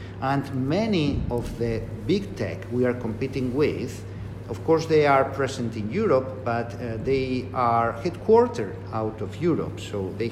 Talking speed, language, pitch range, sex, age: 155 wpm, English, 105-135 Hz, male, 50-69